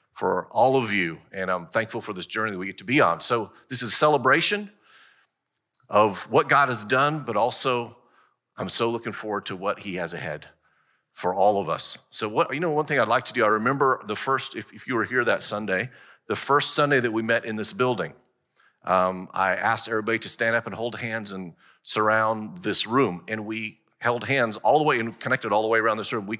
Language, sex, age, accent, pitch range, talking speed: English, male, 40-59, American, 110-135 Hz, 230 wpm